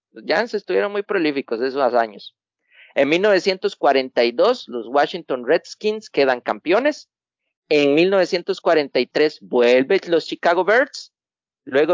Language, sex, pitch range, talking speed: Spanish, male, 140-210 Hz, 105 wpm